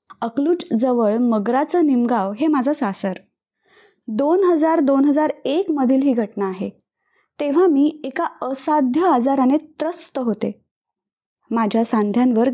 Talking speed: 110 wpm